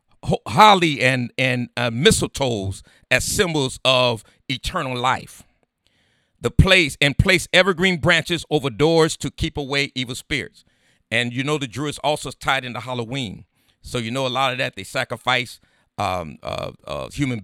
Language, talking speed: English, 160 wpm